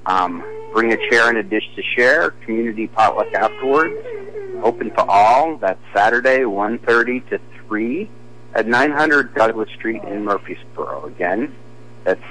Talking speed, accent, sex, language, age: 140 wpm, American, male, English, 50-69